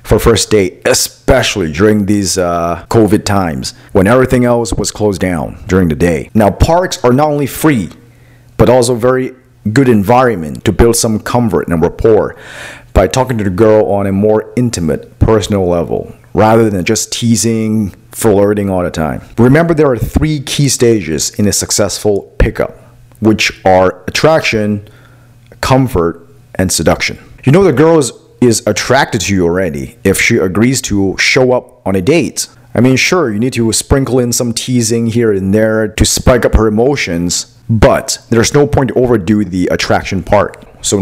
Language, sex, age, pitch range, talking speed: English, male, 40-59, 100-125 Hz, 170 wpm